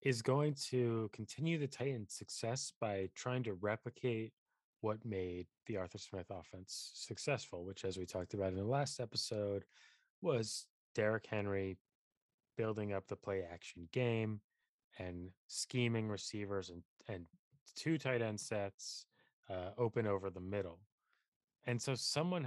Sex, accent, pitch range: male, American, 95-120 Hz